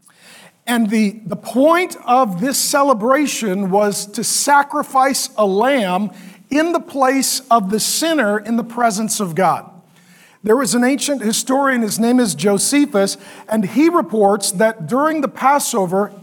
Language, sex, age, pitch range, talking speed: English, male, 40-59, 195-265 Hz, 145 wpm